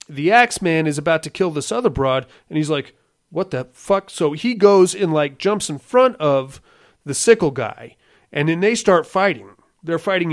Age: 30-49